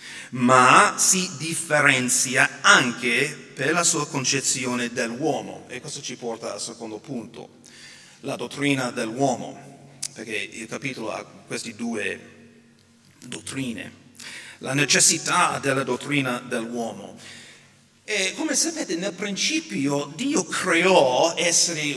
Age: 40-59